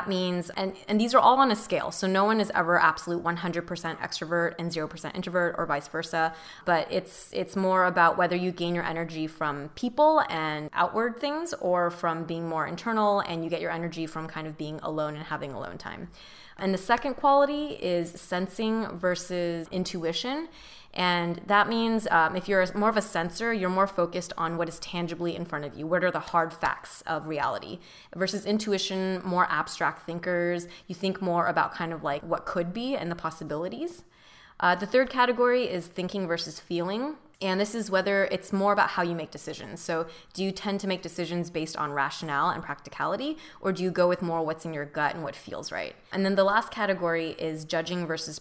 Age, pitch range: 20-39, 160-190 Hz